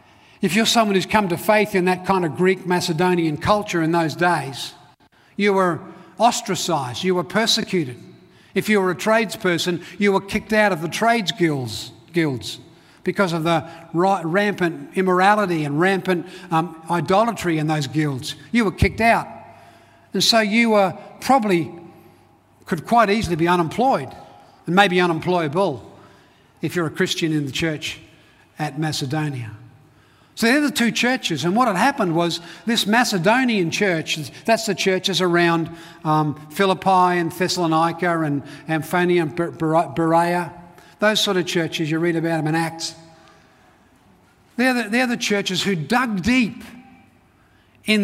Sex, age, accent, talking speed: male, 50-69, Australian, 145 wpm